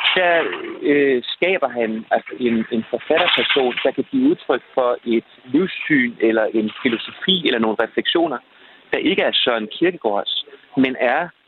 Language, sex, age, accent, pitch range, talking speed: Danish, male, 30-49, native, 115-175 Hz, 145 wpm